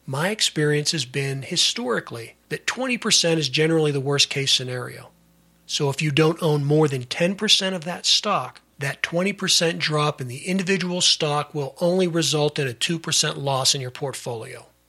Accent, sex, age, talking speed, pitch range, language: American, male, 40-59, 165 wpm, 140-165 Hz, English